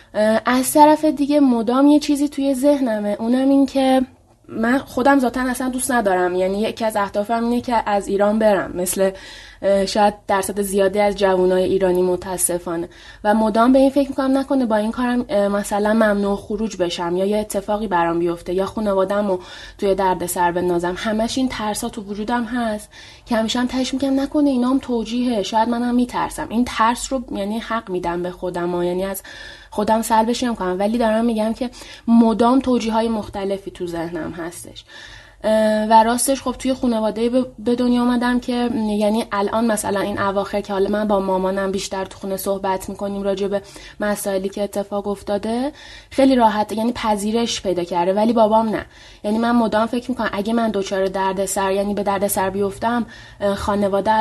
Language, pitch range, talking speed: Persian, 195-240 Hz, 170 wpm